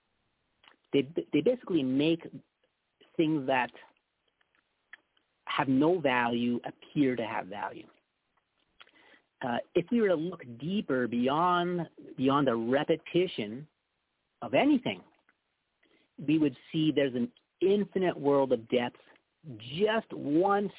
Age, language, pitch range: 50-69, English, 125-165 Hz